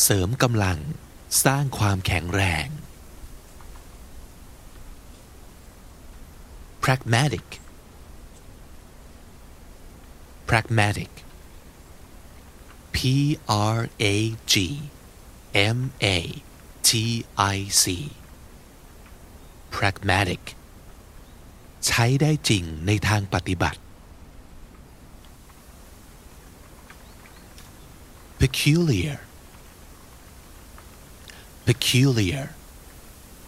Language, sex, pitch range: Thai, male, 75-105 Hz